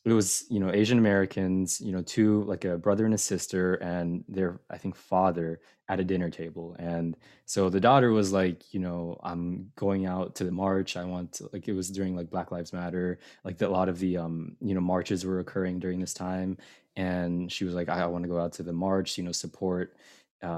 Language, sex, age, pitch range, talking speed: English, male, 20-39, 90-105 Hz, 235 wpm